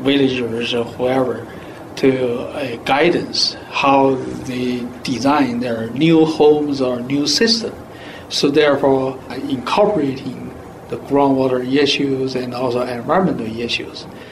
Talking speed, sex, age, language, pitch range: 105 wpm, male, 60-79, English, 125-155 Hz